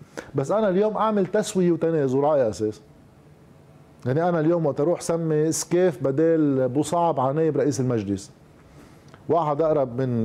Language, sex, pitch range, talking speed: Arabic, male, 125-170 Hz, 125 wpm